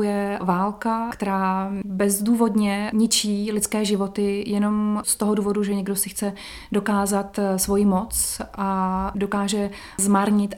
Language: Czech